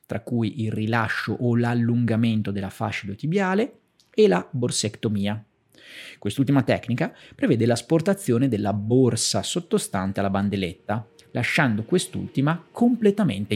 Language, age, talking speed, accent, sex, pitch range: Italian, 30-49, 105 wpm, native, male, 110-170 Hz